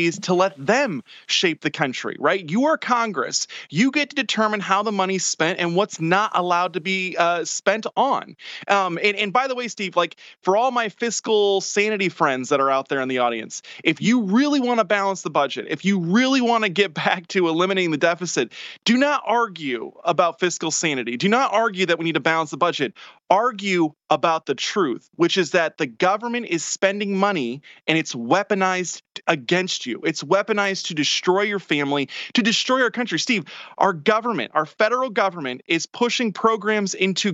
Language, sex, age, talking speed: English, male, 20-39, 195 wpm